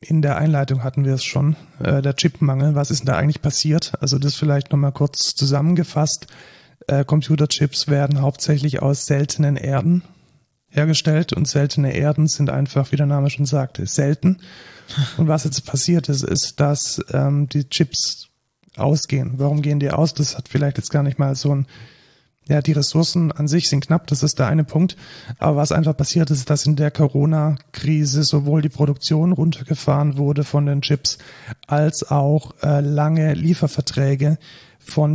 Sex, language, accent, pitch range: male, German, German, 140-155 Hz